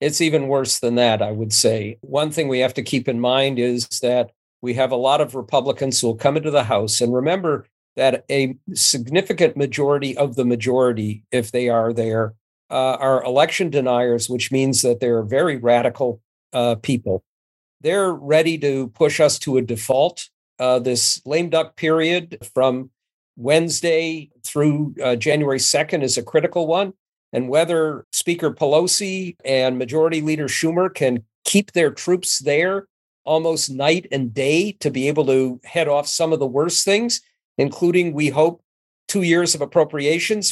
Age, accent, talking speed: 50-69, American, 165 wpm